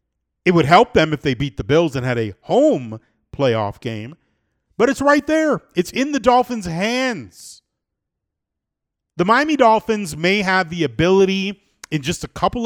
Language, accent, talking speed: English, American, 165 wpm